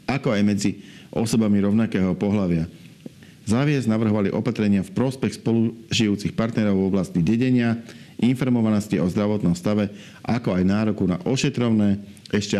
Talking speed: 125 wpm